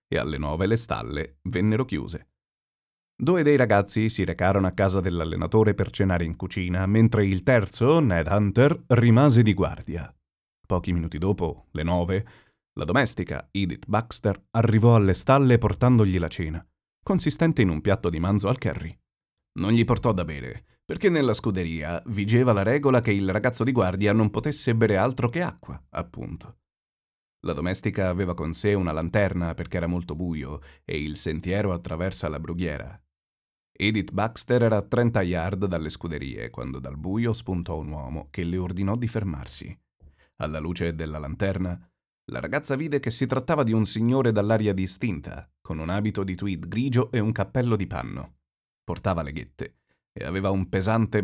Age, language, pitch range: 30-49, Italian, 85-115 Hz